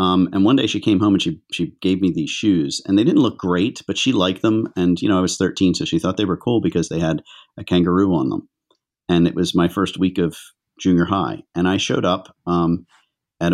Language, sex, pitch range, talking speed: English, male, 90-105 Hz, 255 wpm